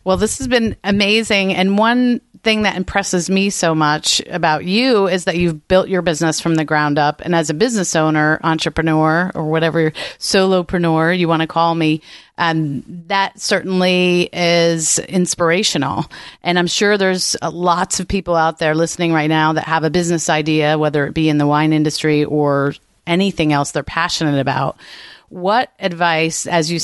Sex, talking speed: female, 175 wpm